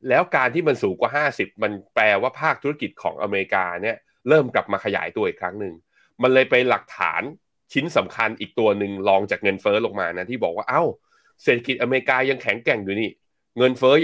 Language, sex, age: Thai, male, 20-39